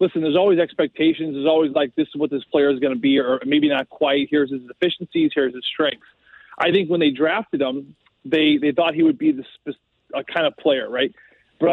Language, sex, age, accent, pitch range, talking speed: English, male, 30-49, American, 145-200 Hz, 235 wpm